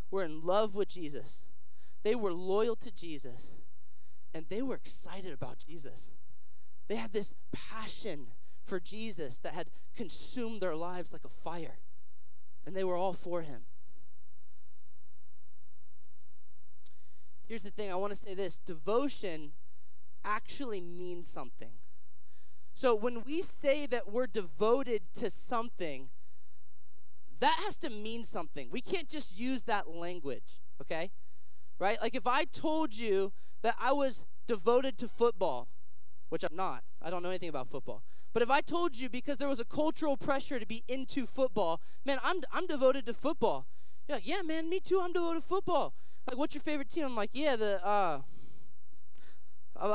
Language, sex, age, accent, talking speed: English, male, 20-39, American, 155 wpm